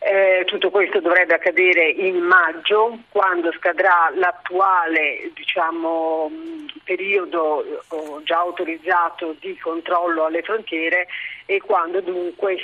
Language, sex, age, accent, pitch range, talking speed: Italian, female, 40-59, native, 165-205 Hz, 100 wpm